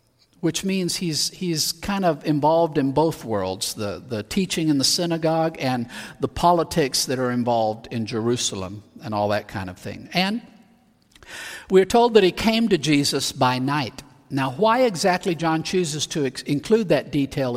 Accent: American